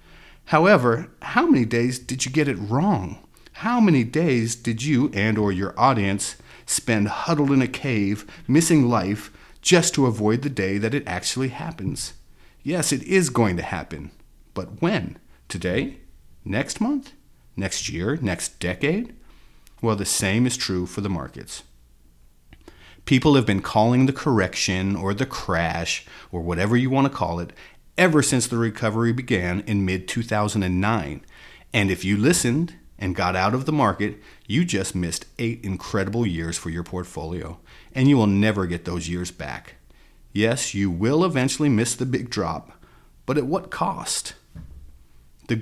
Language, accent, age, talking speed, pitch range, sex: English, American, 40-59, 160 wpm, 90-130 Hz, male